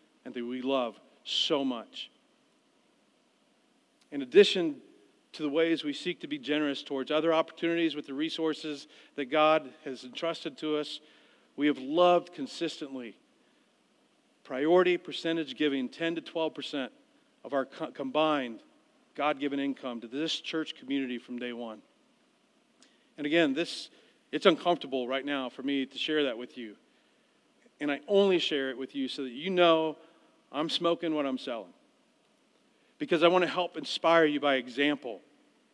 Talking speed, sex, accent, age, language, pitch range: 150 wpm, male, American, 40-59, English, 140-170 Hz